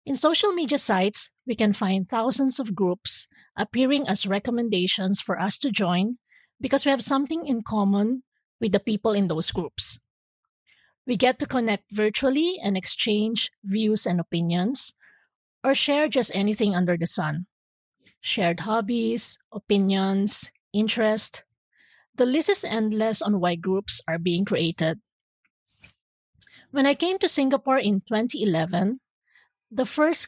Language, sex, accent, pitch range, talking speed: English, female, Filipino, 195-255 Hz, 135 wpm